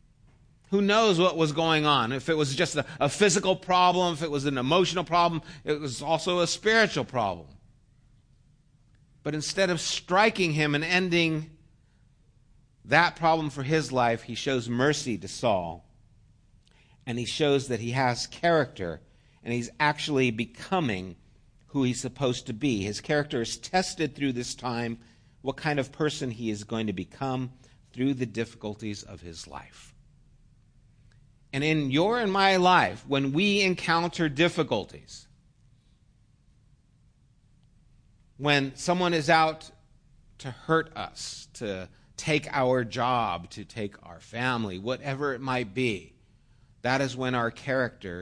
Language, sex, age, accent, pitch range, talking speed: English, male, 50-69, American, 115-150 Hz, 145 wpm